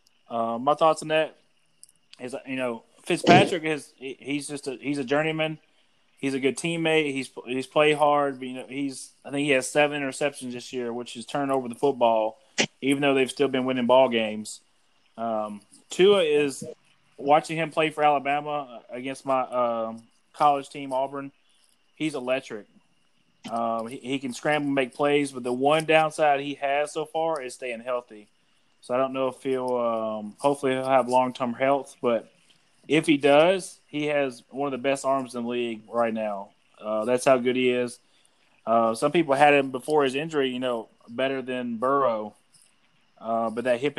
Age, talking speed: 20-39, 190 wpm